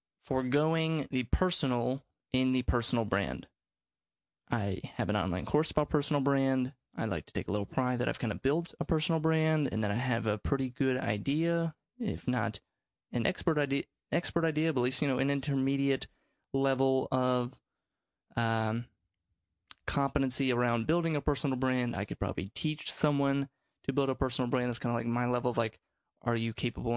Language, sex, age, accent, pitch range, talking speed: English, male, 20-39, American, 120-140 Hz, 180 wpm